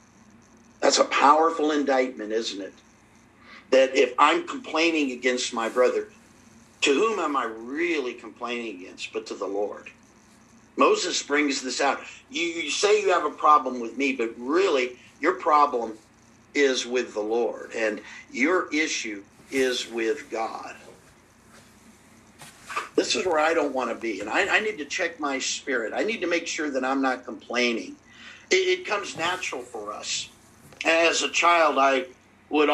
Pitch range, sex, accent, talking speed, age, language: 125-160 Hz, male, American, 160 wpm, 50-69, English